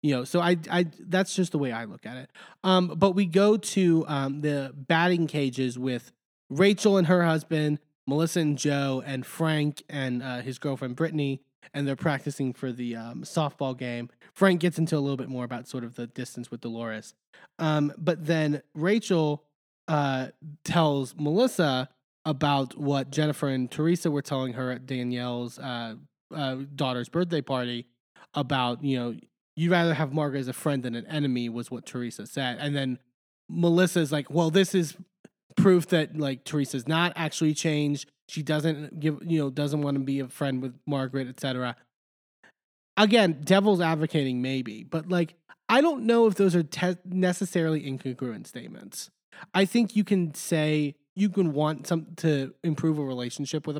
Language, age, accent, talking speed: English, 20-39, American, 175 wpm